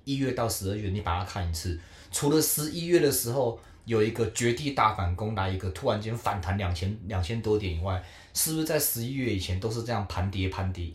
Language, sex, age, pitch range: Chinese, male, 30-49, 90-120 Hz